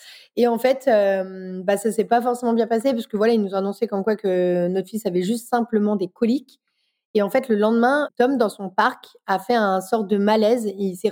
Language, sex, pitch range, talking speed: French, female, 200-240 Hz, 245 wpm